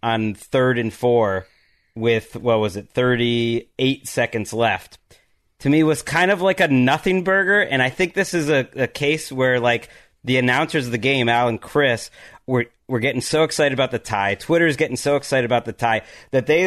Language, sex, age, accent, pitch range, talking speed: English, male, 30-49, American, 120-150 Hz, 195 wpm